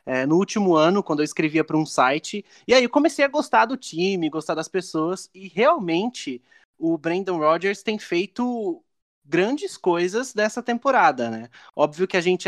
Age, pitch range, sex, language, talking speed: 20-39, 145-200 Hz, male, Portuguese, 180 wpm